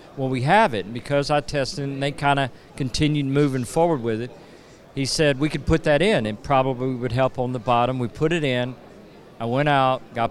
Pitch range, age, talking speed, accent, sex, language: 125-150 Hz, 50-69, 215 wpm, American, male, English